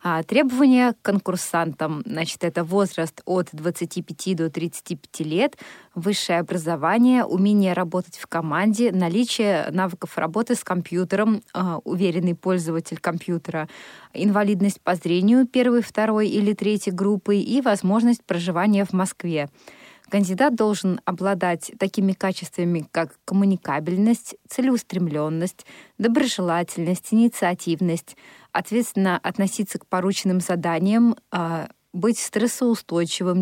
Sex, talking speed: female, 100 wpm